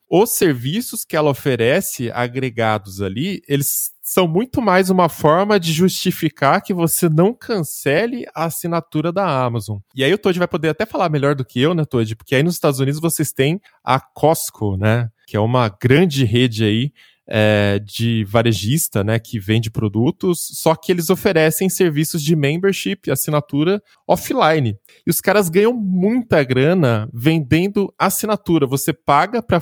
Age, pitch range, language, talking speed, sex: 20-39, 120-170 Hz, Portuguese, 160 wpm, male